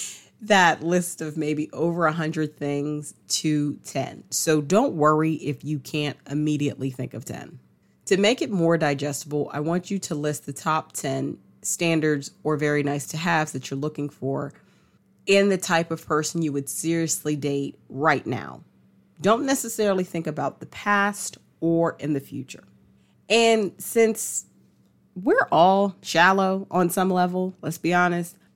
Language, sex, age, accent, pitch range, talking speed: English, female, 30-49, American, 145-185 Hz, 160 wpm